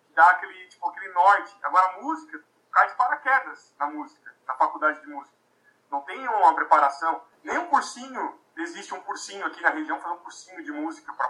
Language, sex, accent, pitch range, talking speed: Portuguese, male, Brazilian, 185-280 Hz, 185 wpm